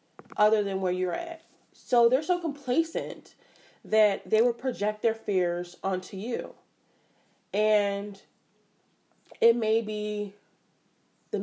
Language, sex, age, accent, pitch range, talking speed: English, female, 20-39, American, 185-215 Hz, 115 wpm